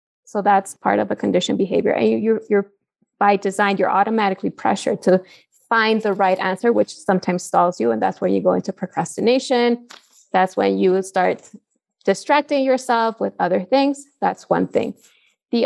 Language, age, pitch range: English, 20-39, 185-225 Hz